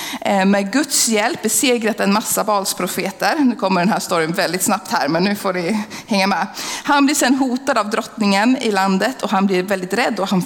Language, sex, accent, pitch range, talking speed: Swedish, female, native, 195-255 Hz, 210 wpm